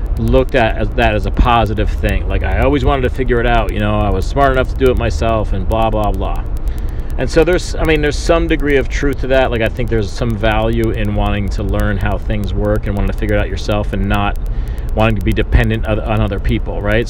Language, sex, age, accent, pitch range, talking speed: English, male, 40-59, American, 100-120 Hz, 250 wpm